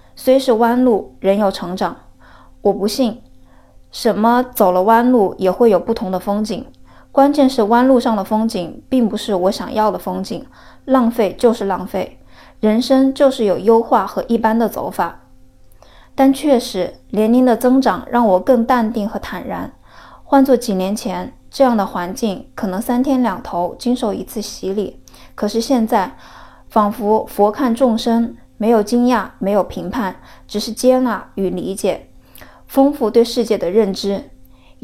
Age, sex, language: 20-39, female, Chinese